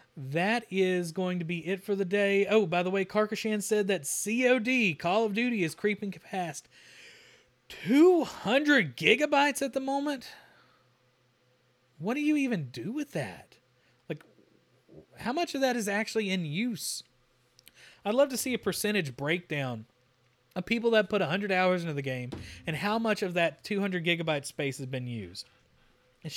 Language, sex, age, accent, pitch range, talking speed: English, male, 30-49, American, 155-215 Hz, 165 wpm